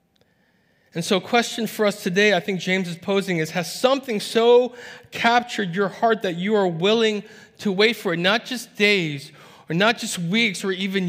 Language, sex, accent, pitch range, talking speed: English, male, American, 165-210 Hz, 195 wpm